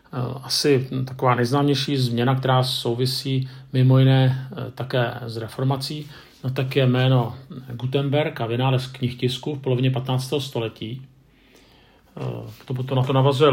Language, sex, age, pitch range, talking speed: Czech, male, 50-69, 125-140 Hz, 125 wpm